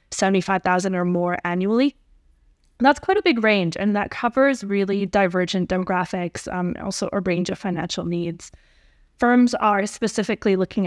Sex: female